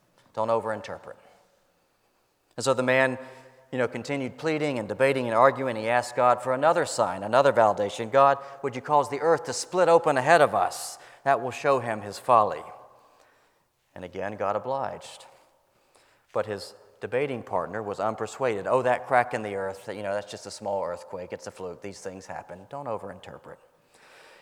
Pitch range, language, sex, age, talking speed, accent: 110-140 Hz, English, male, 40-59, 175 wpm, American